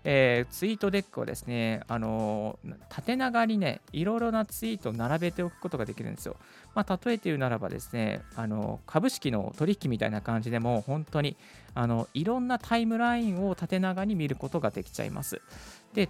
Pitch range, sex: 115-175 Hz, male